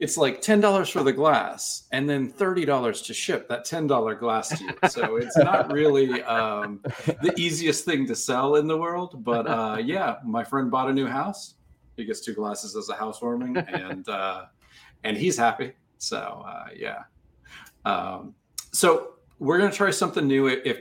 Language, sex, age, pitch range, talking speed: English, male, 40-59, 110-155 Hz, 180 wpm